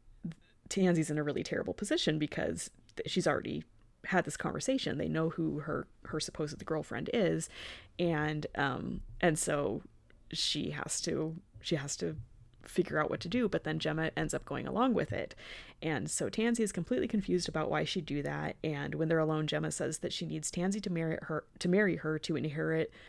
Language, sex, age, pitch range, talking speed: English, female, 20-39, 150-170 Hz, 190 wpm